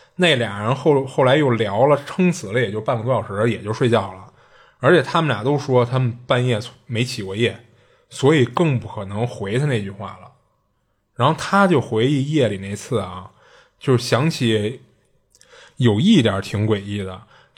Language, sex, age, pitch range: Chinese, male, 20-39, 105-155 Hz